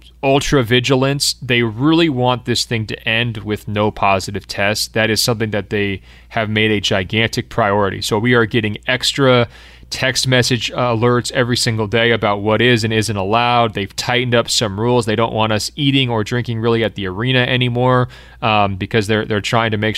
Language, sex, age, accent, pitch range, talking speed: English, male, 30-49, American, 110-130 Hz, 190 wpm